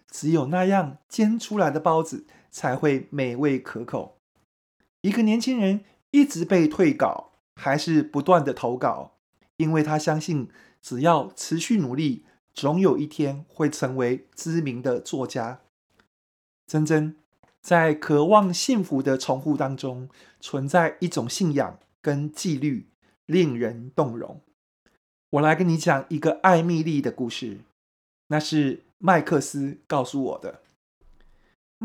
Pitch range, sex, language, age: 135-180 Hz, male, Chinese, 30-49